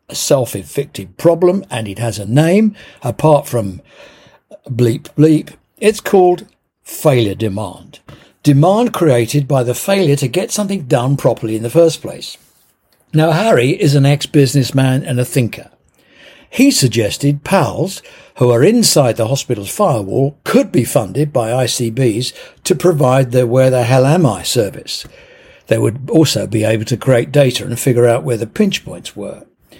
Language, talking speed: English, 155 wpm